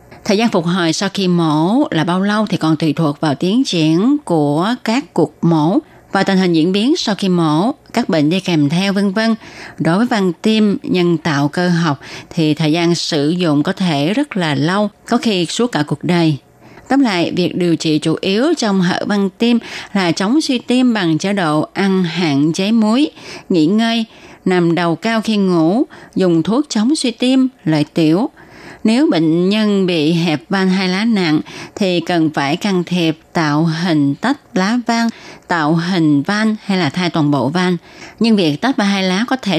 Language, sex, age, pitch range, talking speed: Vietnamese, female, 20-39, 160-210 Hz, 200 wpm